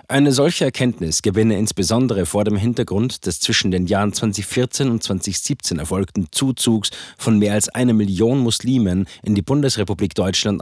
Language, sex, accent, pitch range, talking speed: German, male, German, 100-125 Hz, 155 wpm